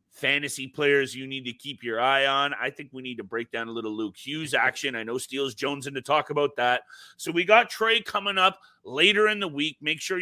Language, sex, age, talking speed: English, male, 30-49, 245 wpm